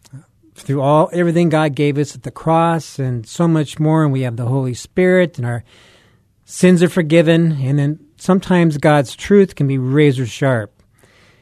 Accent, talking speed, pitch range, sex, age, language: American, 175 wpm, 120-160 Hz, male, 40-59, English